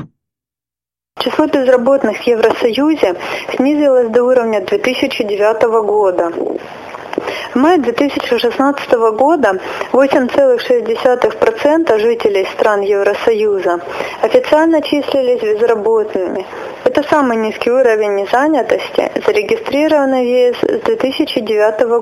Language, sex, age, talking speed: Russian, female, 30-49, 80 wpm